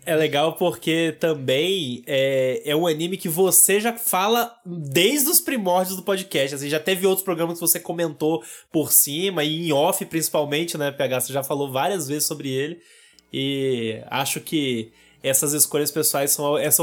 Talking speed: 170 wpm